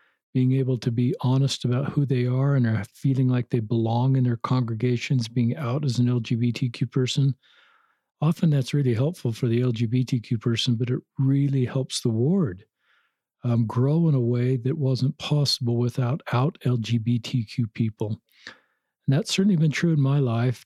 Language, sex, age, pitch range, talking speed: English, male, 50-69, 120-135 Hz, 165 wpm